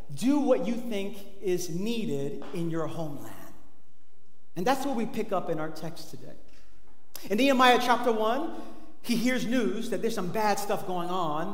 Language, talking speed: English, 170 wpm